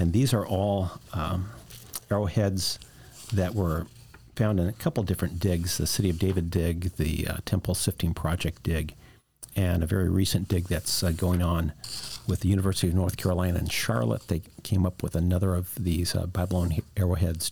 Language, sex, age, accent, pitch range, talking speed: English, male, 50-69, American, 90-105 Hz, 180 wpm